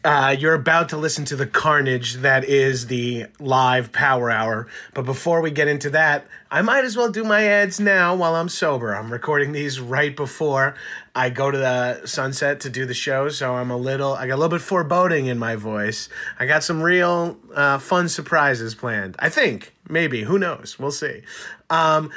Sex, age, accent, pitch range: male, 30-49, American, 130-170 Hz